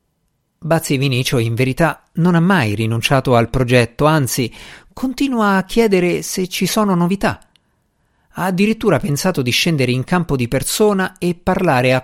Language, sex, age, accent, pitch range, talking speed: Italian, male, 50-69, native, 120-175 Hz, 150 wpm